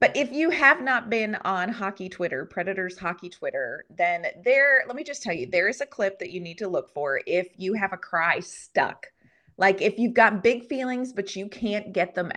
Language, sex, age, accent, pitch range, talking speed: English, female, 30-49, American, 170-210 Hz, 225 wpm